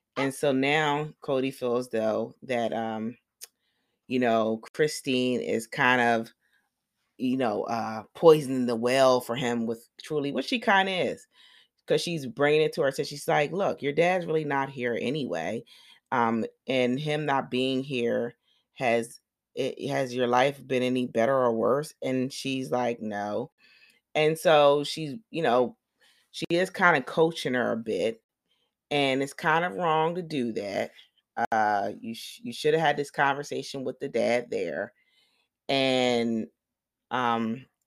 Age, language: 30-49, English